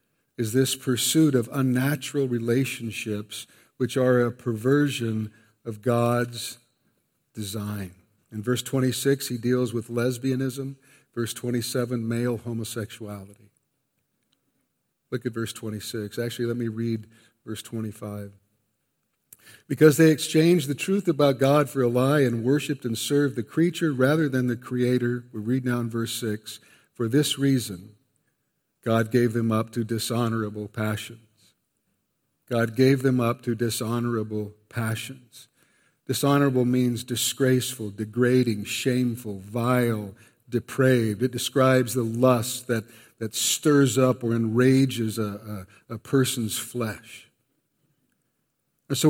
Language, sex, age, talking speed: English, male, 50-69, 120 wpm